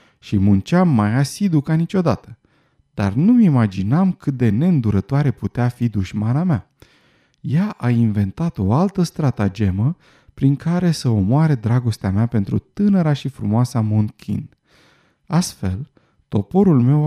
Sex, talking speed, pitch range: male, 125 wpm, 110-160 Hz